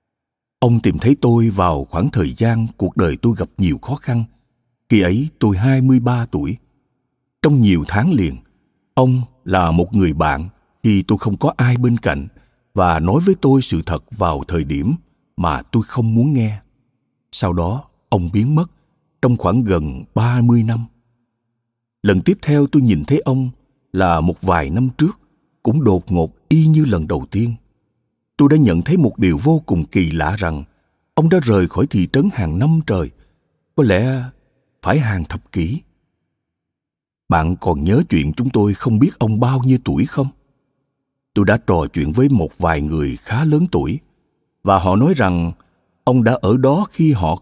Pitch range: 95-135 Hz